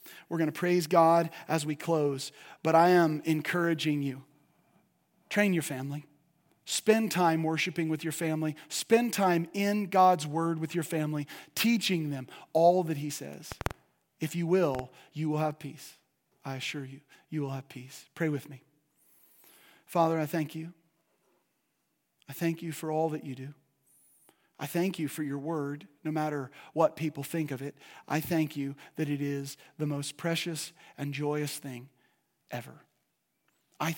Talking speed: 160 wpm